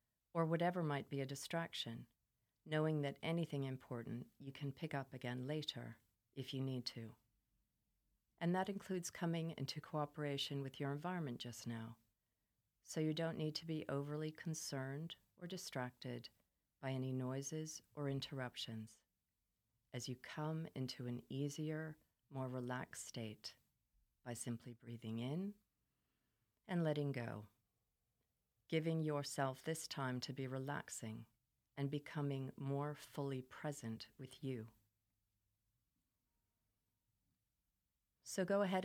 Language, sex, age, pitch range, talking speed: English, female, 40-59, 120-155 Hz, 120 wpm